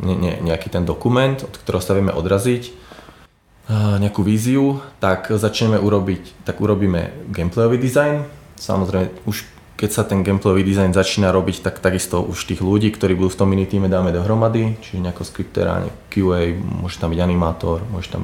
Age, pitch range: 20-39, 85-100 Hz